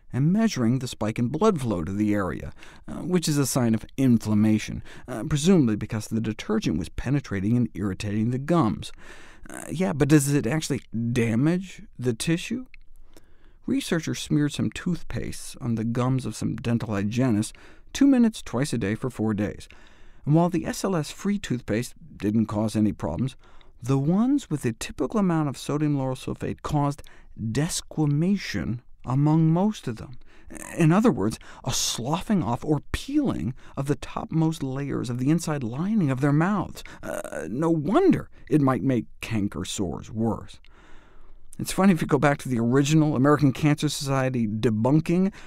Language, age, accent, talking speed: English, 50-69, American, 160 wpm